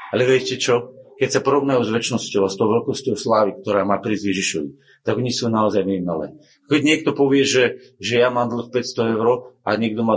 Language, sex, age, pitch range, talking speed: Slovak, male, 40-59, 115-150 Hz, 200 wpm